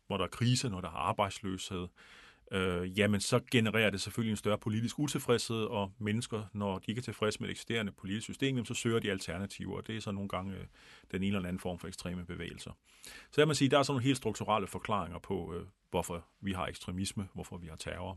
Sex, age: male, 40-59